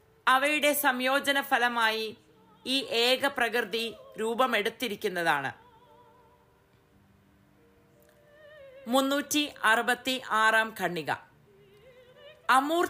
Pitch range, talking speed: 225-285 Hz, 50 wpm